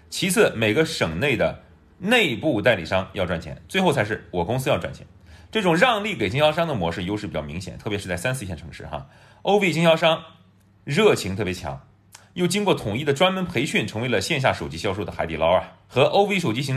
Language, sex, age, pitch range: Chinese, male, 30-49, 95-150 Hz